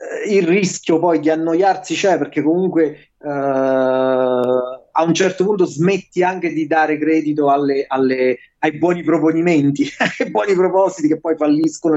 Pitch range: 140-180 Hz